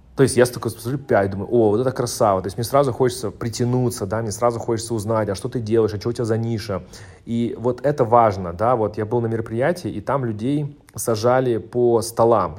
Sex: male